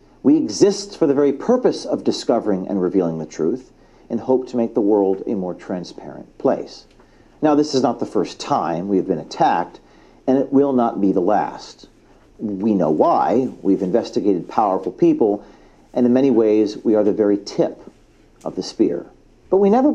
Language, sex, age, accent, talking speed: English, male, 50-69, American, 185 wpm